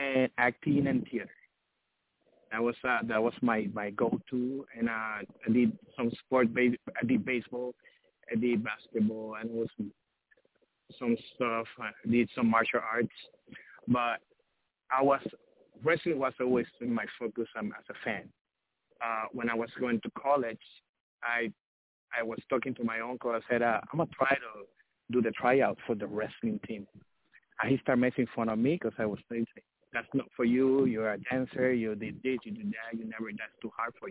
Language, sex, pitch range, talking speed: English, male, 115-130 Hz, 180 wpm